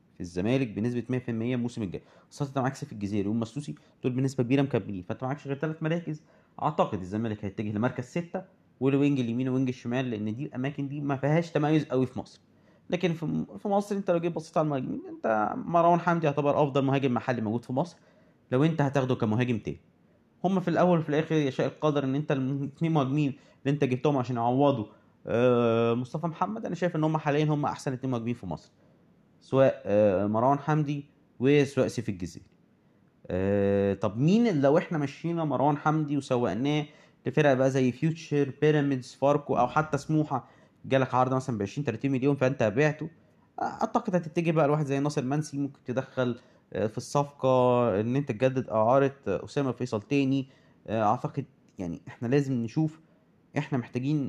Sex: male